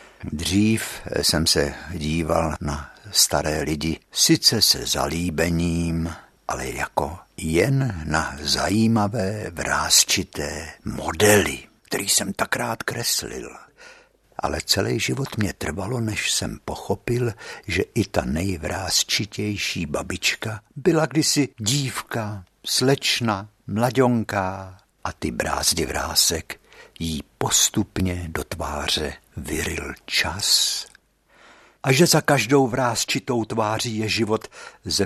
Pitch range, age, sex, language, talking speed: 90-120 Hz, 60-79, male, Czech, 100 wpm